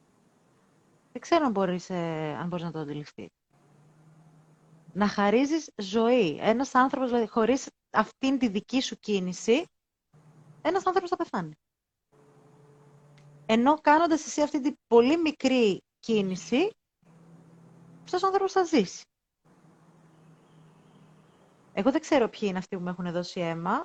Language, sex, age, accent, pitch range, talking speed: Greek, female, 30-49, native, 170-260 Hz, 125 wpm